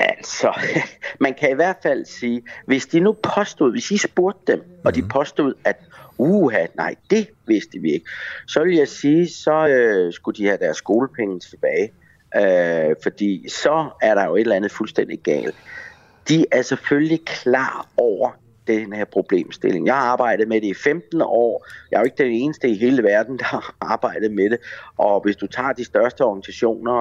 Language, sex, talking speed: Danish, male, 195 wpm